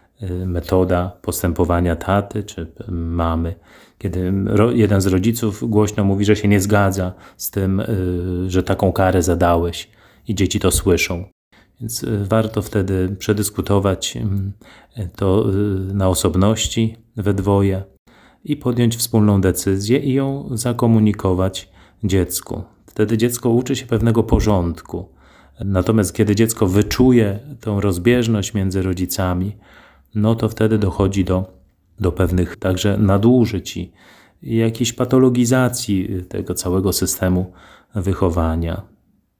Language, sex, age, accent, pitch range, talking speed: Polish, male, 30-49, native, 90-110 Hz, 110 wpm